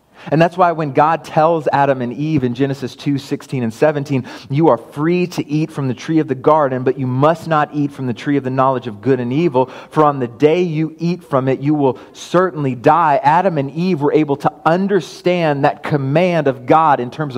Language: English